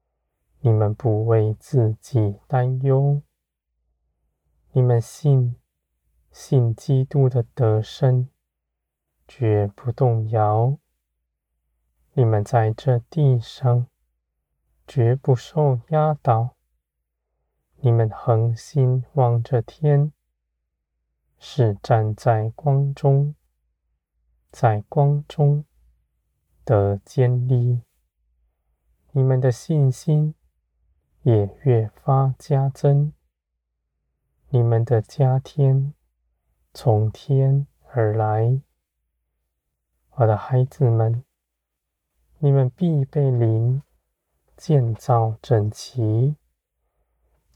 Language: Chinese